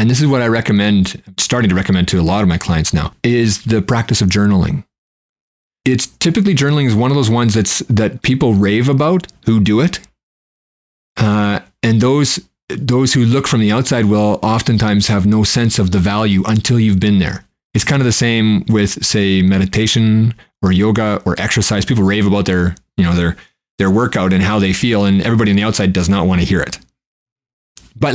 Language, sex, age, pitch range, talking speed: English, male, 30-49, 100-125 Hz, 205 wpm